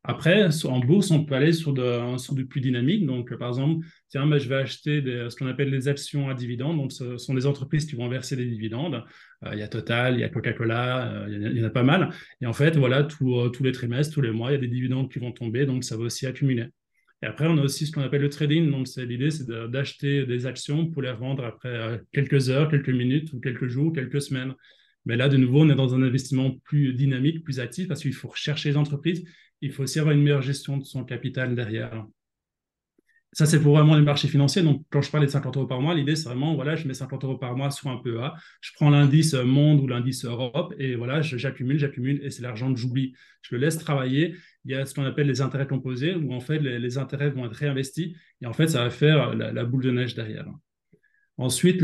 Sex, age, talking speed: male, 20-39, 265 wpm